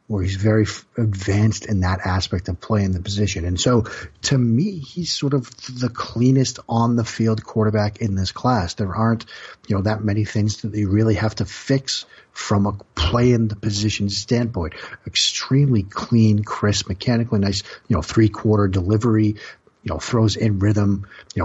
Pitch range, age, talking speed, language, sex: 100-115 Hz, 50-69, 180 wpm, English, male